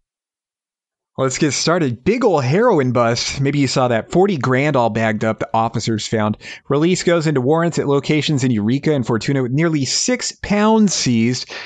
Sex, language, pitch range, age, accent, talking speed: male, English, 115-150 Hz, 30-49, American, 175 wpm